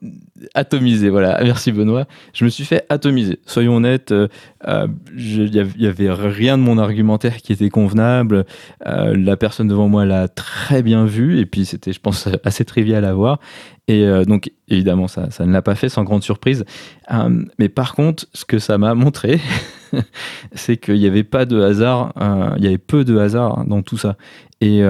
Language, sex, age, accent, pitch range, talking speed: French, male, 20-39, French, 100-120 Hz, 195 wpm